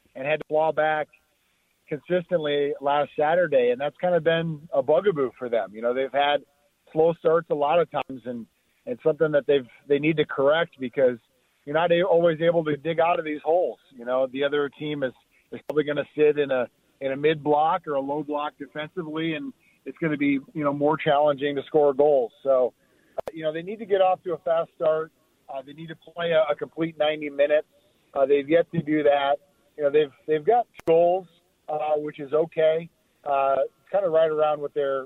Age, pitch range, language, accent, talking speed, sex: 40-59, 145-165 Hz, English, American, 220 wpm, male